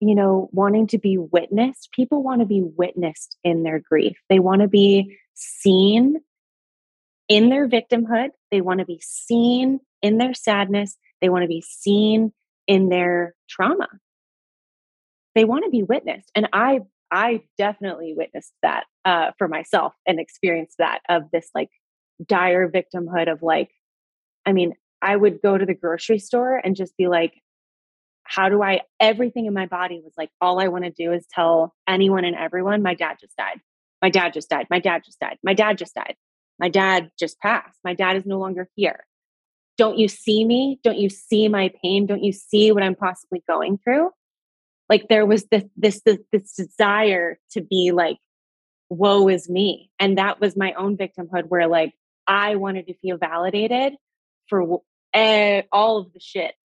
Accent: American